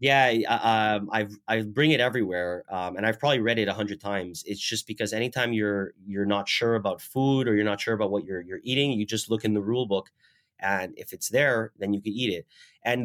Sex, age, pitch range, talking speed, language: male, 30-49, 105-130 Hz, 240 wpm, English